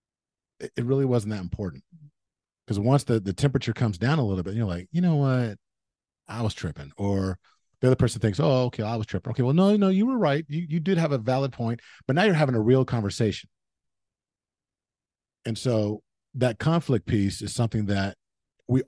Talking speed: 200 wpm